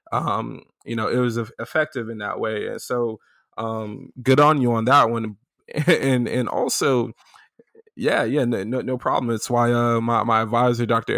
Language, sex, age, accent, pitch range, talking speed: English, male, 20-39, American, 115-135 Hz, 175 wpm